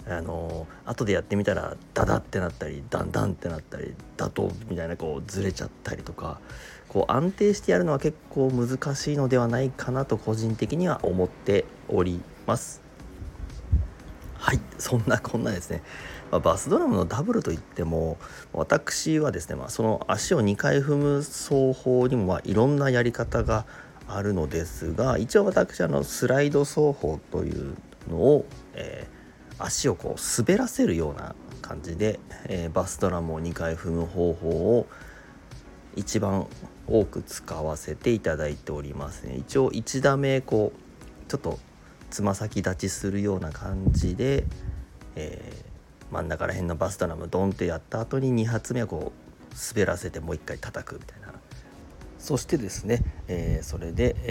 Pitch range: 85-125 Hz